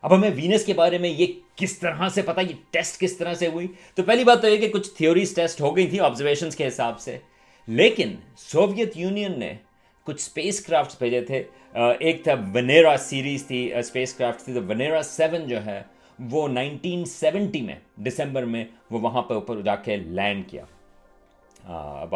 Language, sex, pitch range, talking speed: Urdu, male, 125-170 Hz, 190 wpm